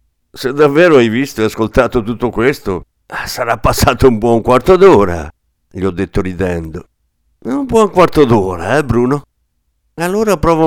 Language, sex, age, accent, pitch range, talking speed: Italian, male, 60-79, native, 90-150 Hz, 145 wpm